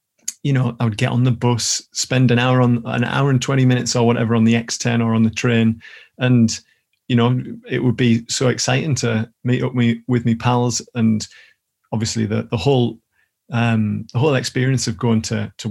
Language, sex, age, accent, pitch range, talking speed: English, male, 30-49, British, 115-125 Hz, 210 wpm